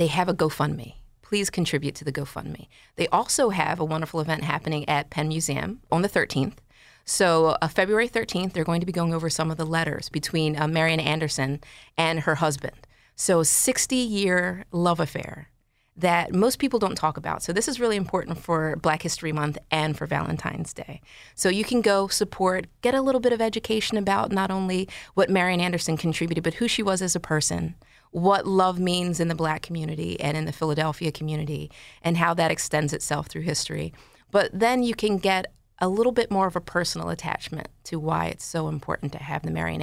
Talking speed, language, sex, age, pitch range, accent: 200 wpm, English, female, 30-49, 150-190 Hz, American